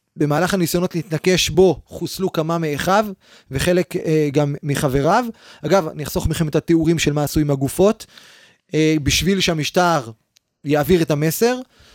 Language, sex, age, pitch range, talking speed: Hebrew, male, 20-39, 155-195 Hz, 140 wpm